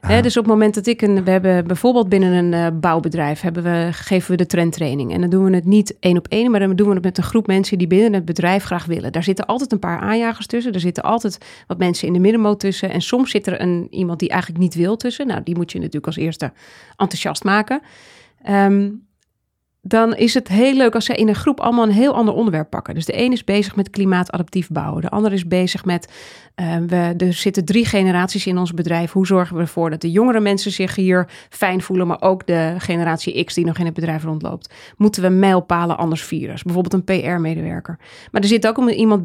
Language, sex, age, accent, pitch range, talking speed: Dutch, female, 30-49, Dutch, 170-205 Hz, 240 wpm